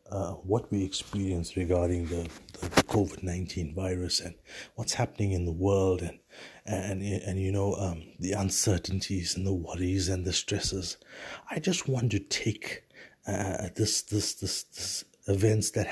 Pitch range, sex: 90-110 Hz, male